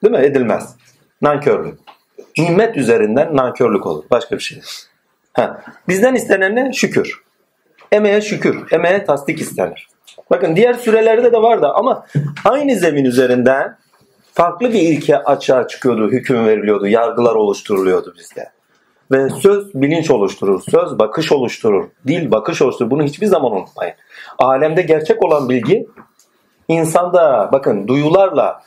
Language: Turkish